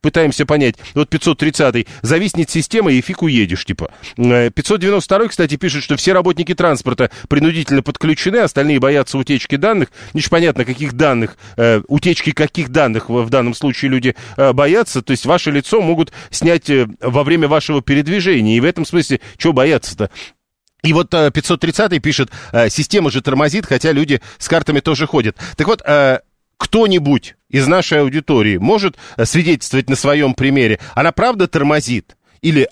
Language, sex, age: Russian, male, 40-59